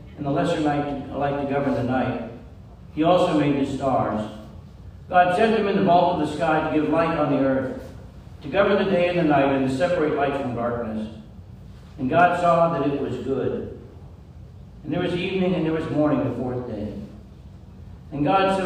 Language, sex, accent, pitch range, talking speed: English, male, American, 120-170 Hz, 200 wpm